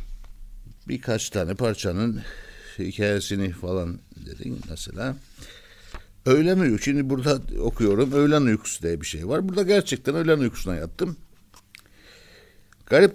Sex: male